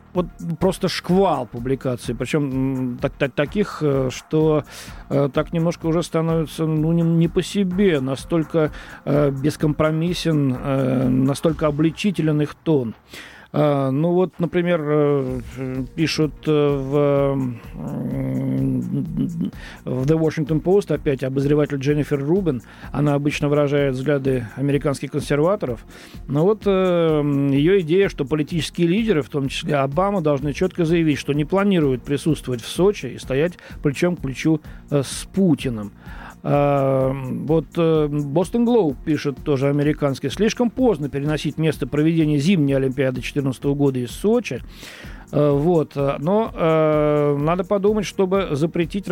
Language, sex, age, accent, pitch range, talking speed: Russian, male, 40-59, native, 140-170 Hz, 115 wpm